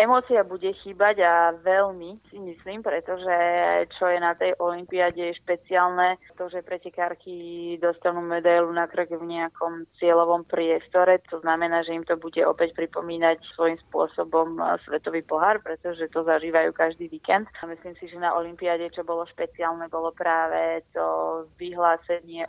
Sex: female